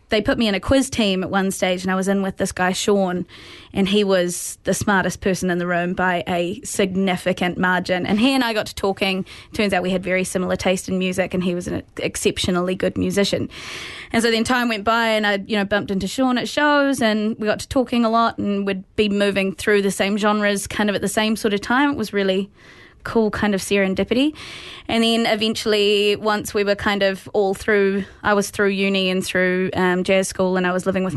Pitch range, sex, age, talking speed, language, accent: 190-230 Hz, female, 20-39, 235 wpm, English, Australian